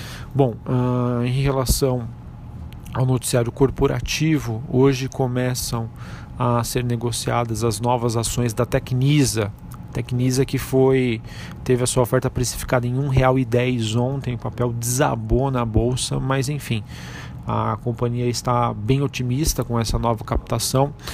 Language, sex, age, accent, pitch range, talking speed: Portuguese, male, 40-59, Brazilian, 115-130 Hz, 130 wpm